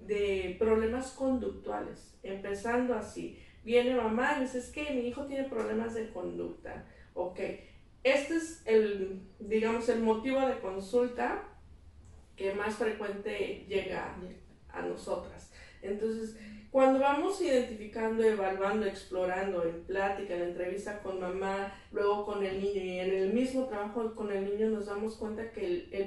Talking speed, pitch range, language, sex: 145 wpm, 200-245 Hz, Spanish, female